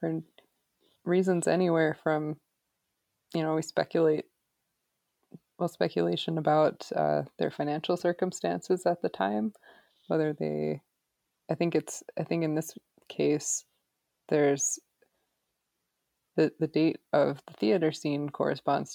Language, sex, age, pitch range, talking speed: English, female, 20-39, 140-160 Hz, 115 wpm